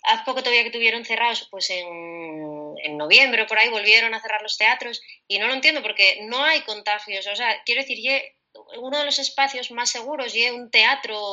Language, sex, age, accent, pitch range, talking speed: Spanish, female, 20-39, Spanish, 210-260 Hz, 205 wpm